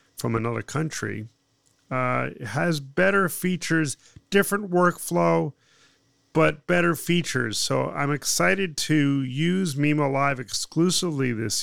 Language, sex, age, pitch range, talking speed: English, male, 40-59, 120-150 Hz, 110 wpm